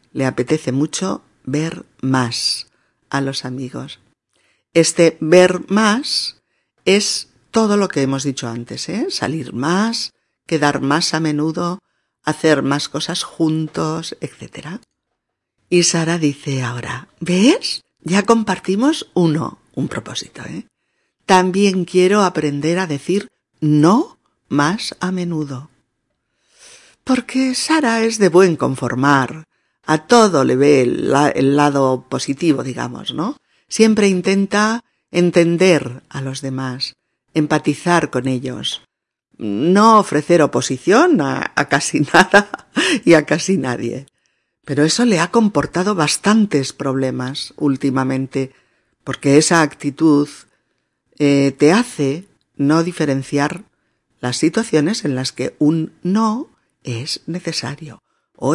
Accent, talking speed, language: Spanish, 115 wpm, Spanish